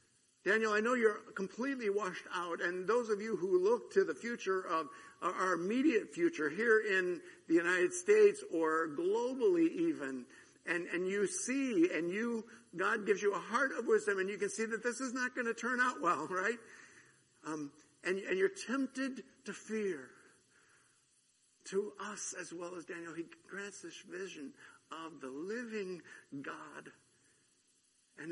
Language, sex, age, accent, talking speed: English, male, 60-79, American, 165 wpm